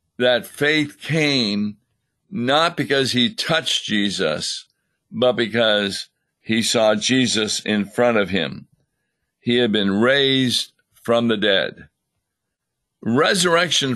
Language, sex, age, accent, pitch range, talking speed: English, male, 50-69, American, 115-145 Hz, 110 wpm